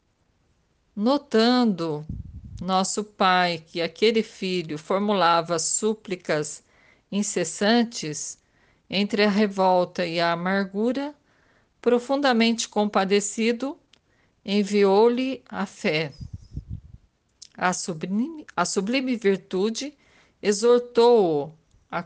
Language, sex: Portuguese, female